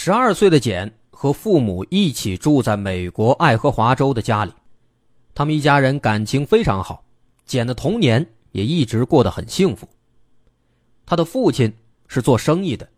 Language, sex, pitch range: Chinese, male, 100-140 Hz